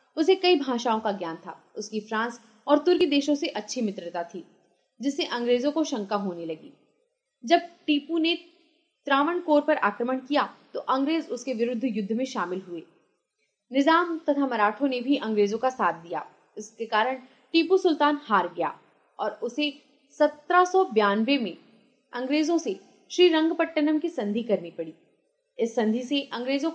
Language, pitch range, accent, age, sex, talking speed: Hindi, 215-310 Hz, native, 30-49, female, 100 wpm